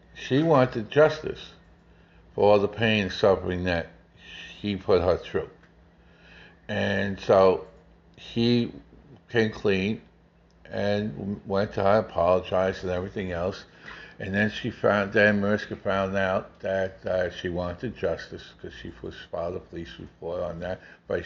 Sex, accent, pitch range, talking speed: male, American, 90-110 Hz, 140 wpm